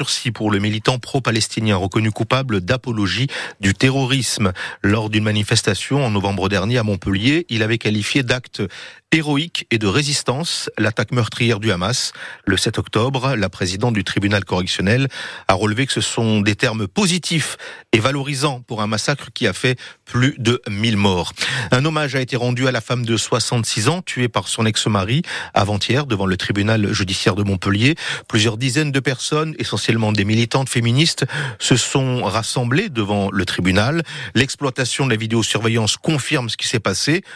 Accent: French